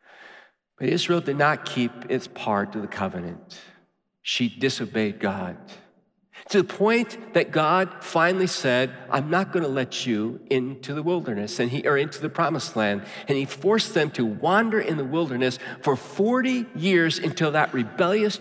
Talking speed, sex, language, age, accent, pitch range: 165 wpm, male, English, 50-69, American, 115-175 Hz